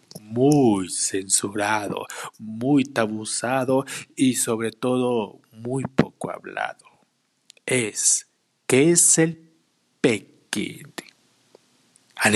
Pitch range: 110-155 Hz